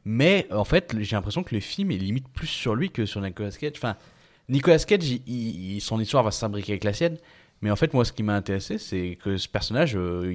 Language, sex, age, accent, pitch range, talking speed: French, male, 20-39, French, 95-120 Hz, 245 wpm